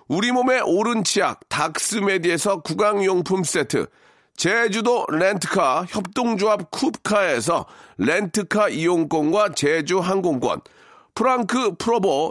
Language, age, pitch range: Korean, 40-59, 185-230 Hz